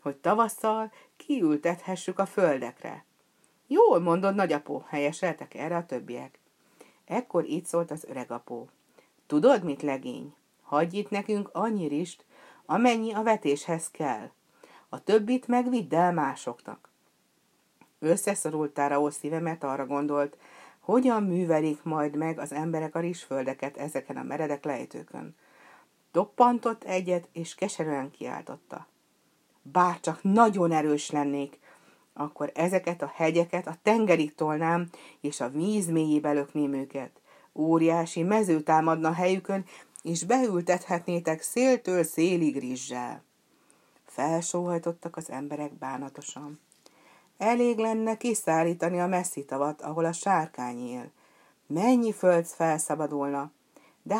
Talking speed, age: 115 wpm, 50-69